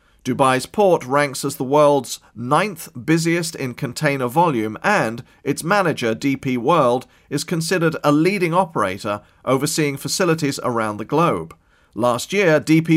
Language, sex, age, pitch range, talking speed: English, male, 40-59, 130-160 Hz, 135 wpm